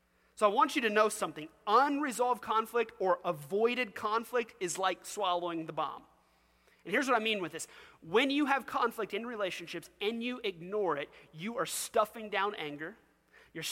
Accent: American